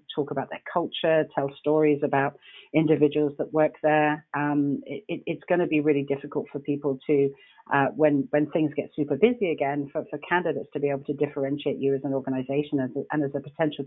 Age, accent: 40-59, British